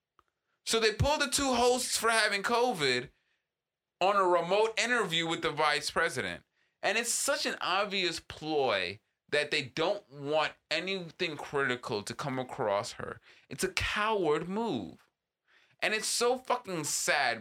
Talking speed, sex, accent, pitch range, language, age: 145 wpm, male, American, 120-190 Hz, English, 20-39